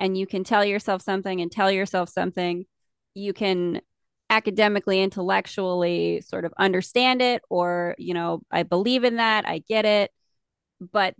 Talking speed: 155 wpm